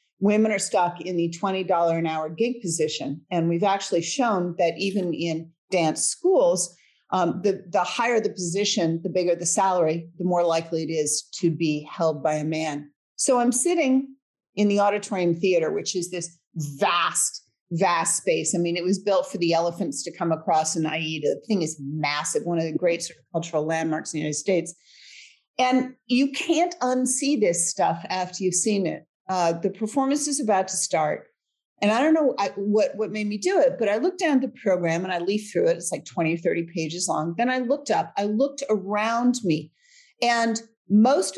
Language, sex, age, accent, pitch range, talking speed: English, female, 40-59, American, 170-225 Hz, 195 wpm